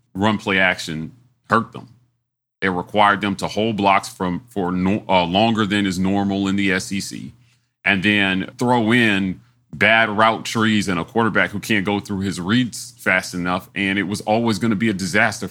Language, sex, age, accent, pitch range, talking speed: English, male, 30-49, American, 100-125 Hz, 185 wpm